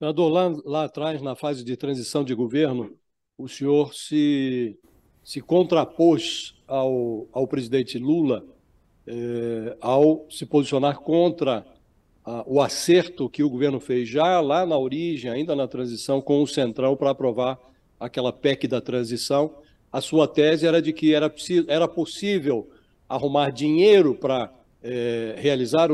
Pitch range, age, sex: 130-170 Hz, 60-79, male